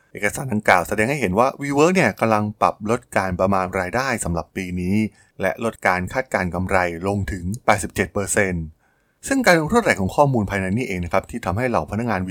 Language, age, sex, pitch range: Thai, 20-39, male, 95-120 Hz